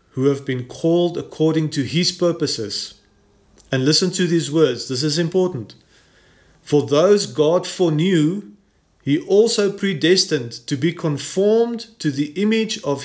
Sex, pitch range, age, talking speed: male, 125-165 Hz, 40-59, 140 wpm